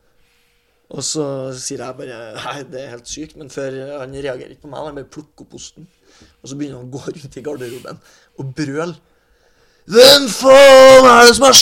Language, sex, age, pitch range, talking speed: English, male, 20-39, 145-215 Hz, 200 wpm